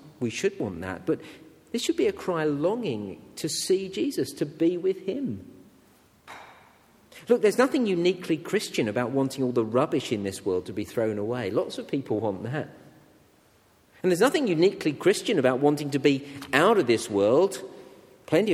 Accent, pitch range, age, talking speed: British, 115-165 Hz, 50-69, 175 wpm